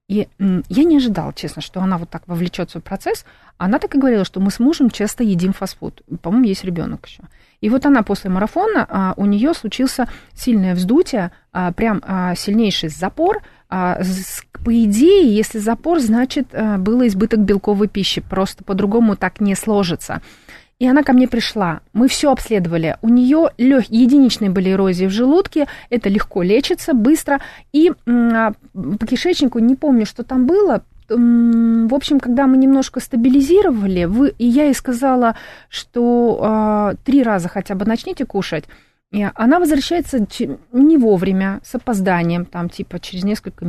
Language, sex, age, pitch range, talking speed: Russian, female, 30-49, 195-255 Hz, 160 wpm